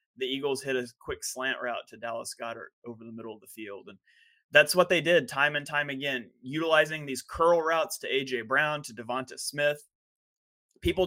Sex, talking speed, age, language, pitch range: male, 195 wpm, 20-39, English, 125-150 Hz